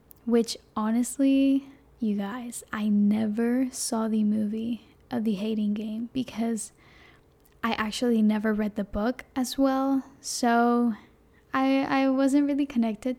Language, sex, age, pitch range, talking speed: English, female, 10-29, 220-260 Hz, 125 wpm